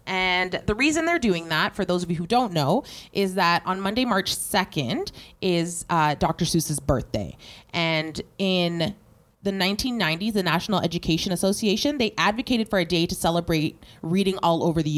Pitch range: 165-205 Hz